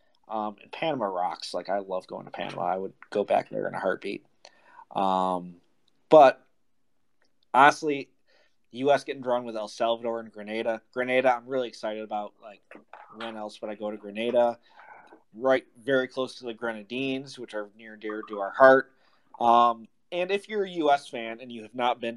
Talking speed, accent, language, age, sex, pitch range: 190 wpm, American, English, 20-39, male, 110-125 Hz